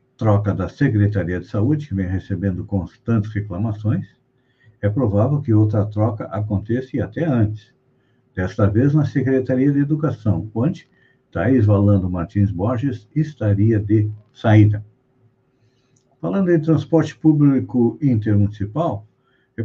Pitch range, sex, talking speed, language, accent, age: 100-130 Hz, male, 120 wpm, Portuguese, Brazilian, 60-79